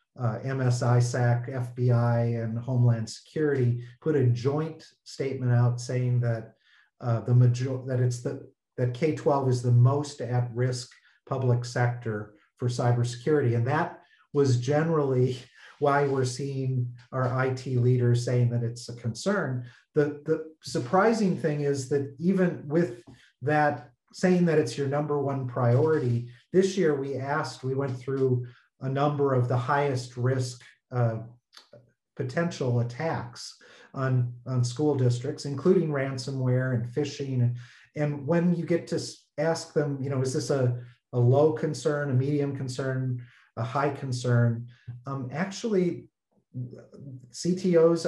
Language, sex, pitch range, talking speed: English, male, 120-150 Hz, 140 wpm